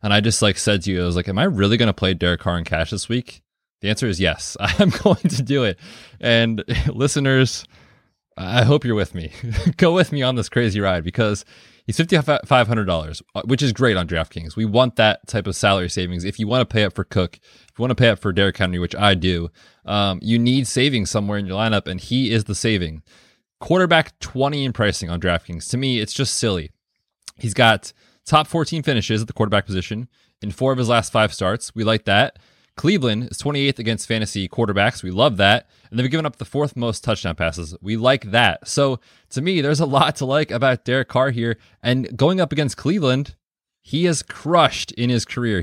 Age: 20-39